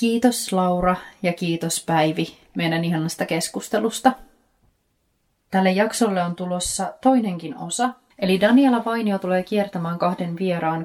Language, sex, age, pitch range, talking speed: Finnish, female, 30-49, 165-200 Hz, 115 wpm